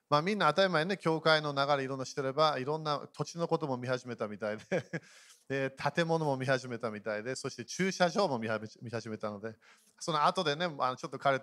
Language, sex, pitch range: Japanese, male, 125-170 Hz